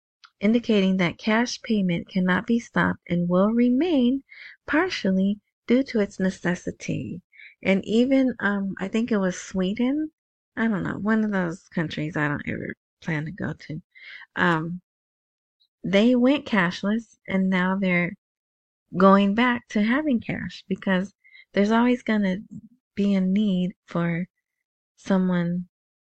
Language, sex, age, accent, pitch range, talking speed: English, female, 30-49, American, 180-240 Hz, 135 wpm